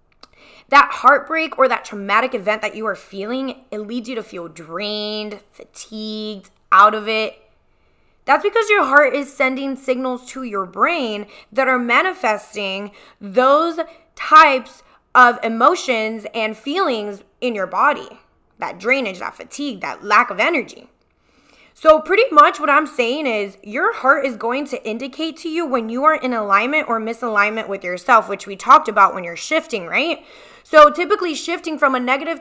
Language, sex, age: English, female, 20-39